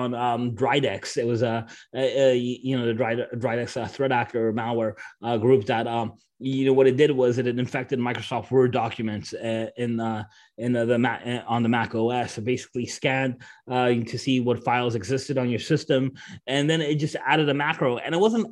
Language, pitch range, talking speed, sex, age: English, 120-145 Hz, 205 wpm, male, 20-39